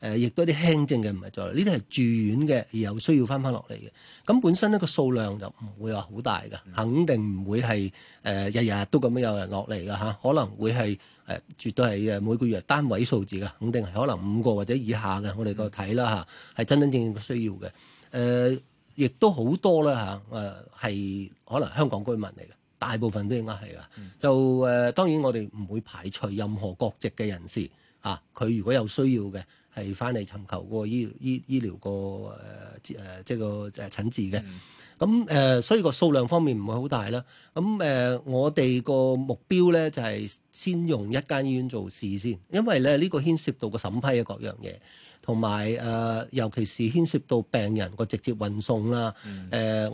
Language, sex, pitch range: Chinese, male, 105-135 Hz